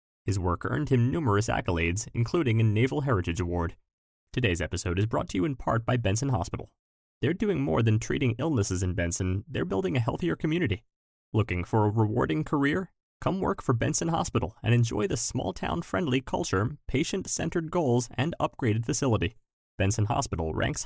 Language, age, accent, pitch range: English, 30-49, American, 95-125 Hz